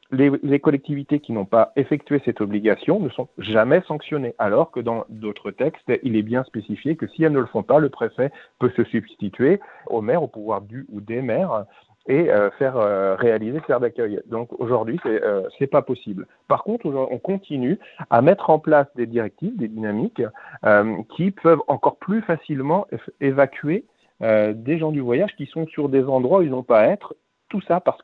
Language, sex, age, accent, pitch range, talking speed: French, male, 40-59, French, 115-155 Hz, 205 wpm